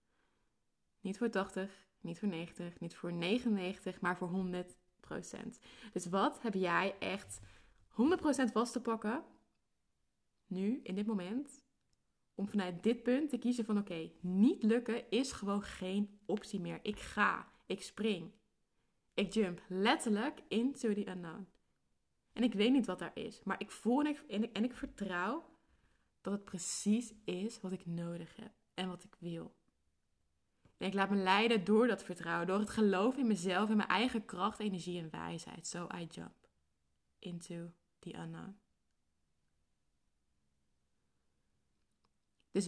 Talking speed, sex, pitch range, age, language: 145 wpm, female, 170-220 Hz, 20-39, Dutch